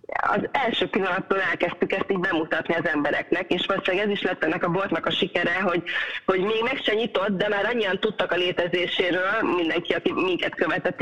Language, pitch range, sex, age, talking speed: Hungarian, 175-205 Hz, female, 30-49, 190 wpm